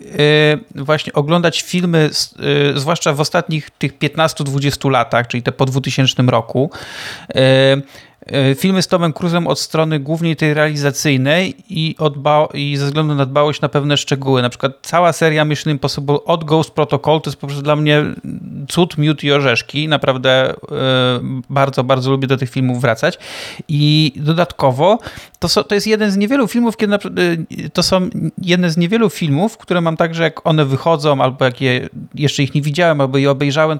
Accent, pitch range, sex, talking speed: native, 140-165 Hz, male, 170 wpm